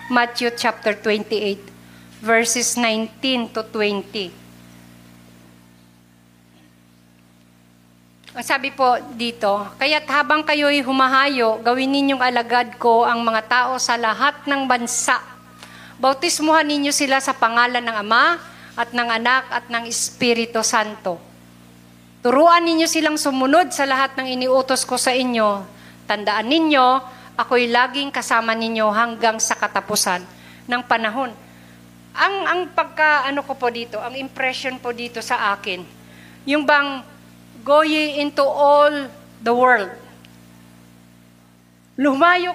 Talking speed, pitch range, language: 115 wpm, 200-285 Hz, Filipino